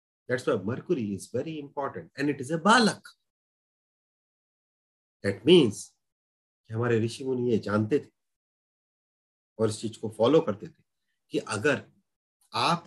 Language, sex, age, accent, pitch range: Hindi, male, 40-59, native, 110-170 Hz